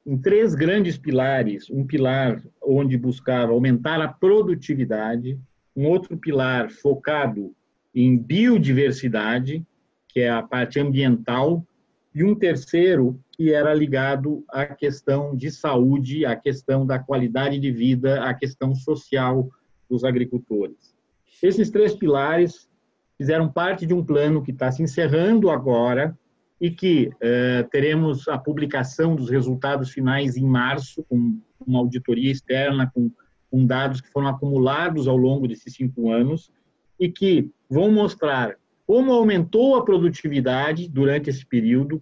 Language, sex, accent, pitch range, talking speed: Portuguese, male, Brazilian, 130-160 Hz, 135 wpm